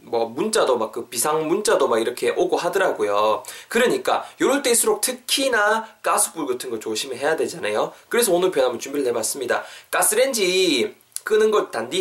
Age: 20-39